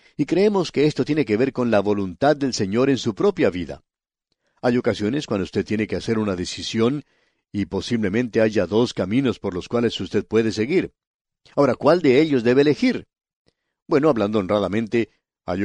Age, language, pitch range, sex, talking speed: 50-69, English, 100-135 Hz, male, 175 wpm